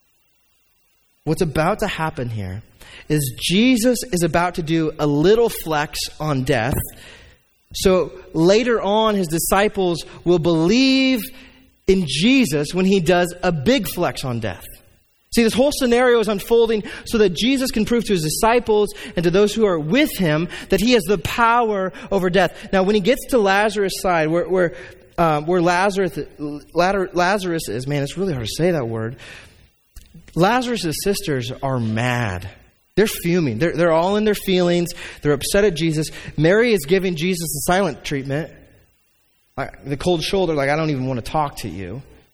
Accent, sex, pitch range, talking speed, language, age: American, male, 155-215 Hz, 165 wpm, English, 20-39